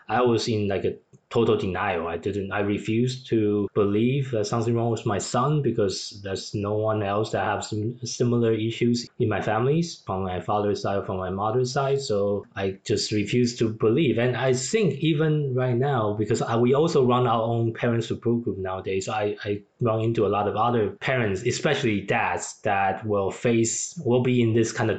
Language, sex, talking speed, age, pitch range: English, male, 200 wpm, 20-39, 105-125 Hz